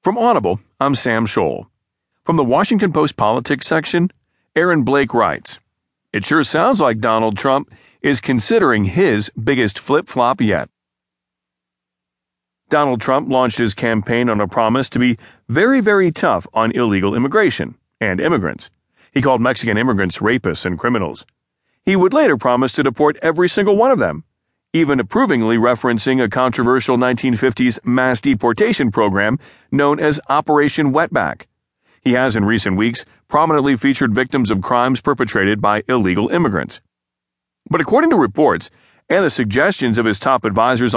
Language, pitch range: English, 110-145 Hz